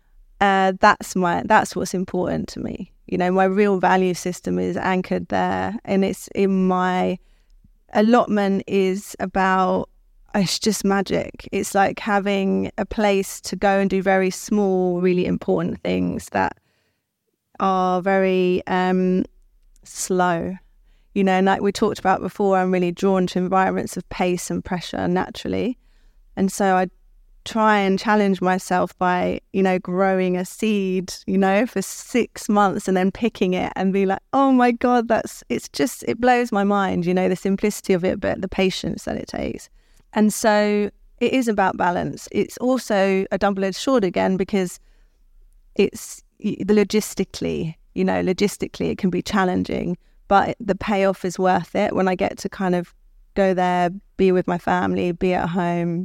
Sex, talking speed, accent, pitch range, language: female, 165 wpm, British, 185-200 Hz, English